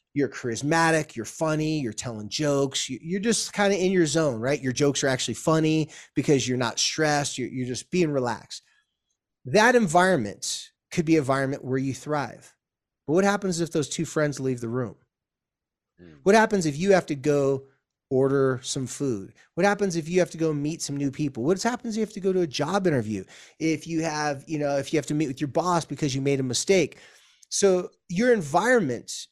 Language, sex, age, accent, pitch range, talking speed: English, male, 30-49, American, 135-170 Hz, 205 wpm